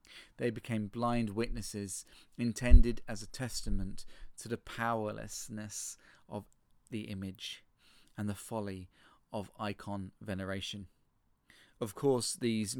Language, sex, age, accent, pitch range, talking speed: English, male, 30-49, British, 100-120 Hz, 110 wpm